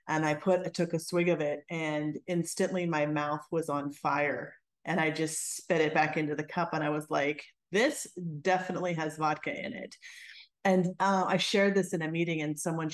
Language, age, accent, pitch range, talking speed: English, 30-49, American, 160-195 Hz, 210 wpm